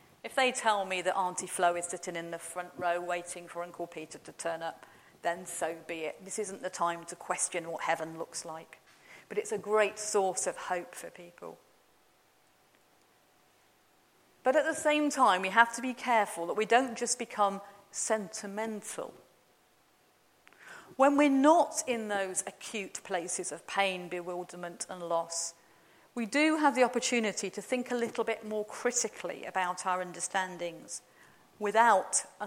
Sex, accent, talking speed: female, British, 160 wpm